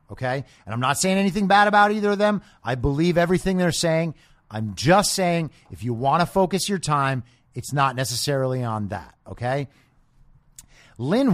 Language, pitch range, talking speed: English, 115-160 Hz, 175 wpm